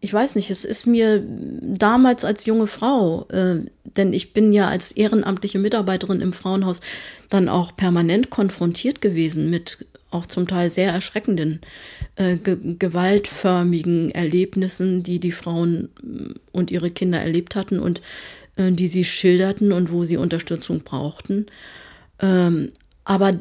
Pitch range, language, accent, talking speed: 175-210 Hz, German, German, 140 wpm